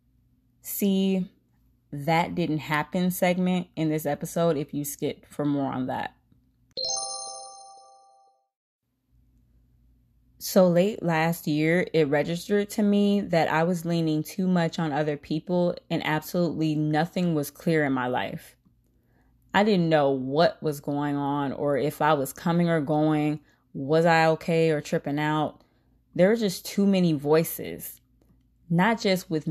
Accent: American